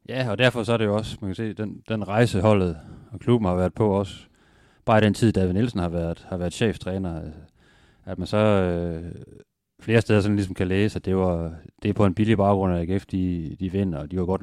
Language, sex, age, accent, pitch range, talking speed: Danish, male, 30-49, native, 90-105 Hz, 245 wpm